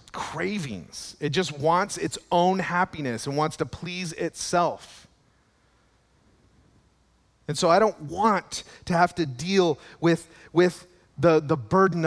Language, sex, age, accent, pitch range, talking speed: English, male, 40-59, American, 130-180 Hz, 130 wpm